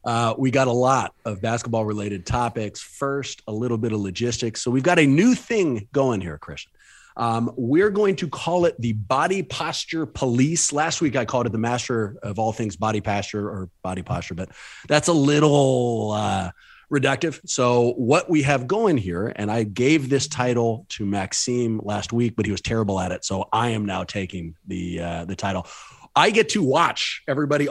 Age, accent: 30-49, American